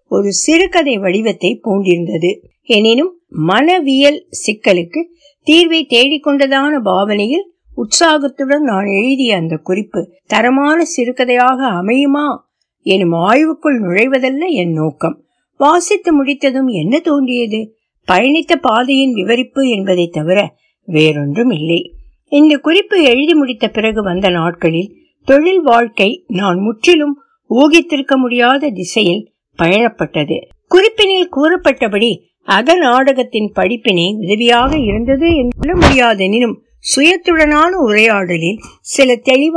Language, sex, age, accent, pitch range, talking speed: Tamil, female, 60-79, native, 210-300 Hz, 65 wpm